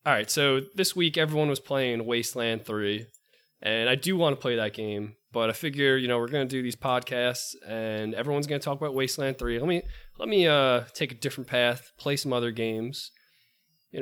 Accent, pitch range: American, 115-140 Hz